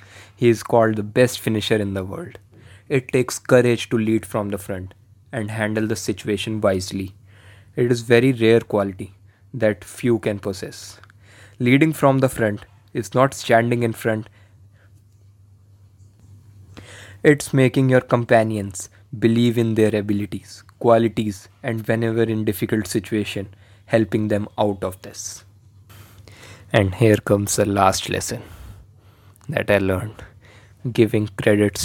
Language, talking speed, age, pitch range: English, 130 wpm, 20-39, 100-115 Hz